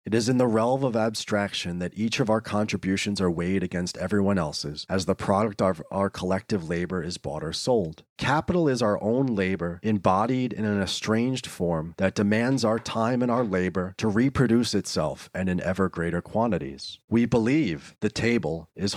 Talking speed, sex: 185 wpm, male